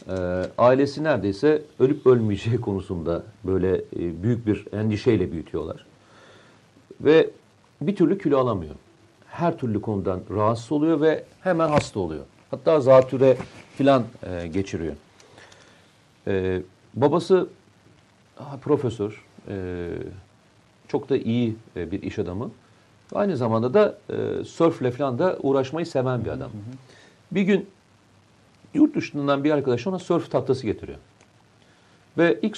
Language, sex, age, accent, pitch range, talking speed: Turkish, male, 50-69, native, 100-160 Hz, 105 wpm